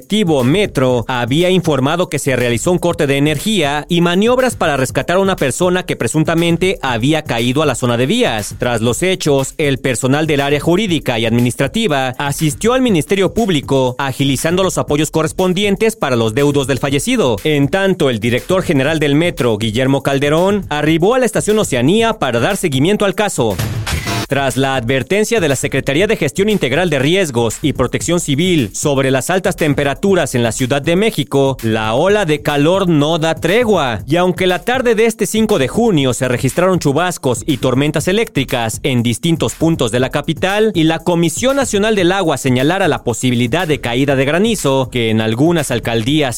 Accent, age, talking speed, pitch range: Mexican, 40-59, 175 wpm, 130-185 Hz